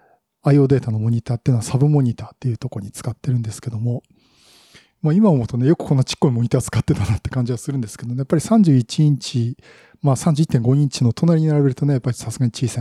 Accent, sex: native, male